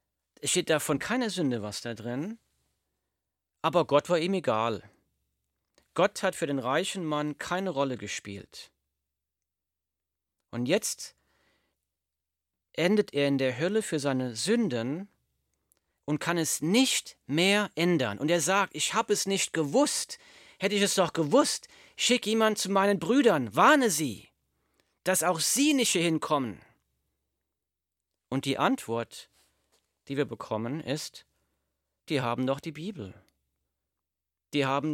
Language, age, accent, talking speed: German, 40-59, German, 135 wpm